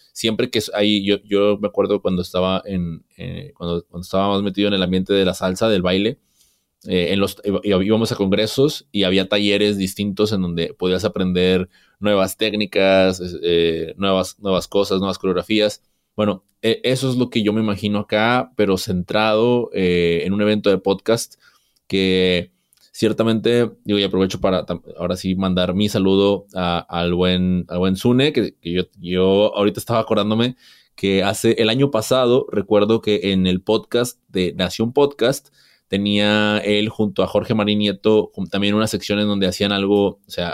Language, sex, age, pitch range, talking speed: Spanish, male, 20-39, 90-105 Hz, 170 wpm